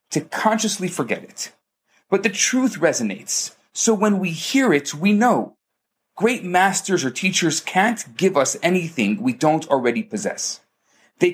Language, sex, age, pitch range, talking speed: English, male, 30-49, 140-195 Hz, 150 wpm